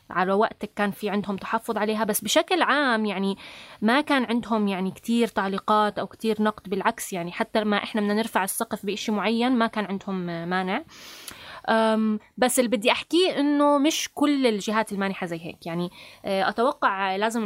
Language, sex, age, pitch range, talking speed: Arabic, female, 20-39, 205-250 Hz, 160 wpm